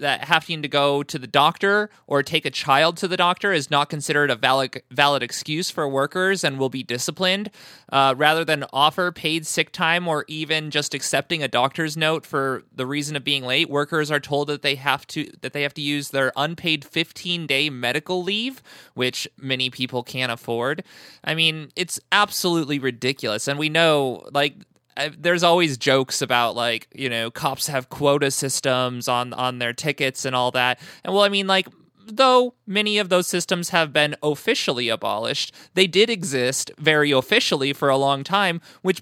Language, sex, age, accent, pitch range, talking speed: English, male, 20-39, American, 140-180 Hz, 185 wpm